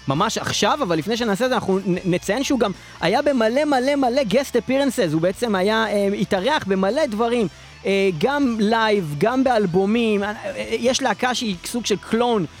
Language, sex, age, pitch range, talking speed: Hebrew, male, 30-49, 190-225 Hz, 185 wpm